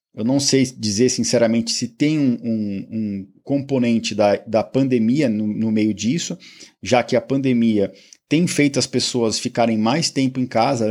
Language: Portuguese